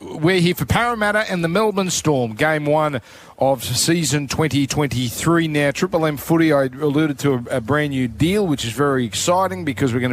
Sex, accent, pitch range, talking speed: male, Australian, 125-165 Hz, 185 wpm